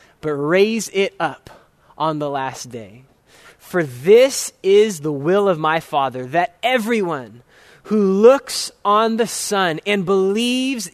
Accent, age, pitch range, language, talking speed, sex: American, 20-39, 155-210 Hz, English, 135 wpm, male